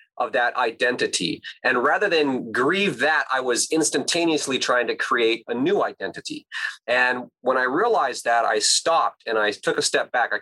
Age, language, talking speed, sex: 30-49, English, 180 wpm, male